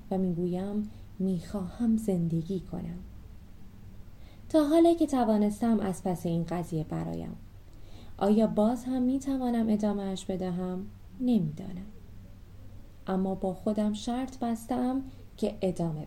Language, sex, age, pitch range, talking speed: Persian, female, 20-39, 150-225 Hz, 110 wpm